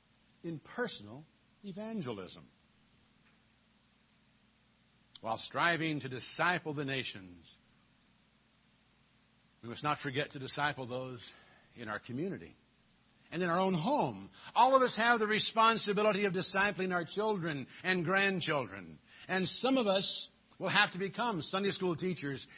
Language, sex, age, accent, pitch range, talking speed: English, male, 60-79, American, 120-190 Hz, 125 wpm